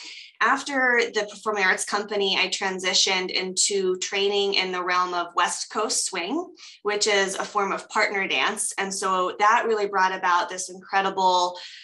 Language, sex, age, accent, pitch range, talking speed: English, female, 20-39, American, 180-205 Hz, 155 wpm